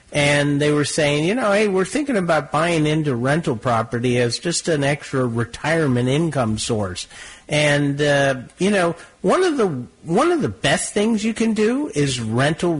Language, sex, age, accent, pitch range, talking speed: English, male, 50-69, American, 120-175 Hz, 170 wpm